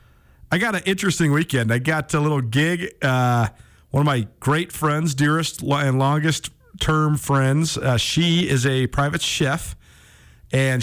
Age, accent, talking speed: 40-59, American, 155 wpm